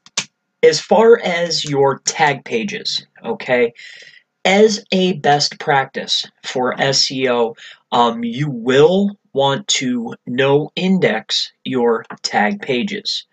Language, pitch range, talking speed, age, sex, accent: English, 135-220 Hz, 105 wpm, 30-49, male, American